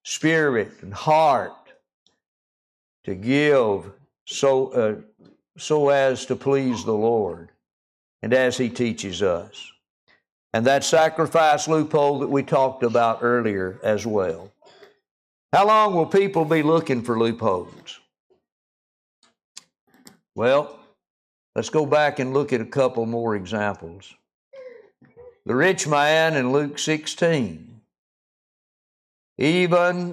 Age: 60-79